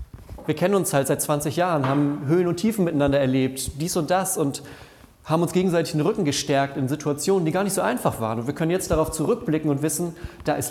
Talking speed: 230 wpm